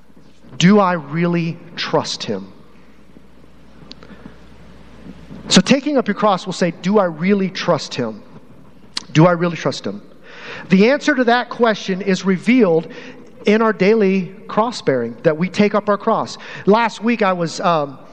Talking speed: 150 wpm